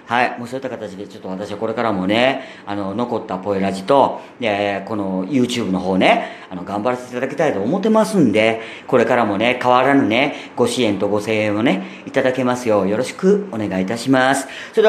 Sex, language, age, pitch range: female, Japanese, 40-59, 105-155 Hz